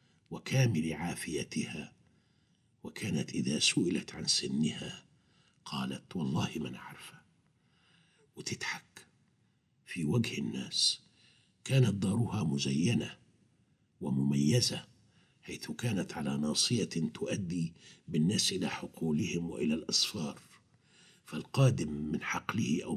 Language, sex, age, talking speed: Arabic, male, 60-79, 85 wpm